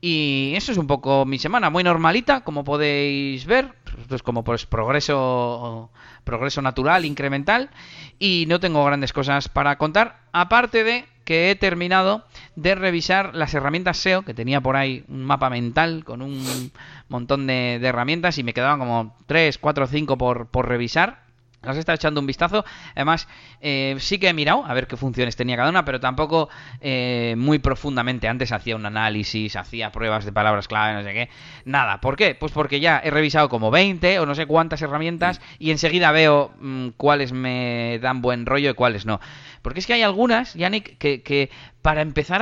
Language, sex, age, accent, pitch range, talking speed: Spanish, male, 30-49, Spanish, 125-170 Hz, 185 wpm